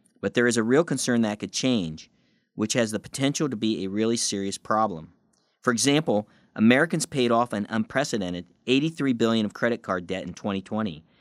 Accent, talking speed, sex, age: American, 180 wpm, male, 40-59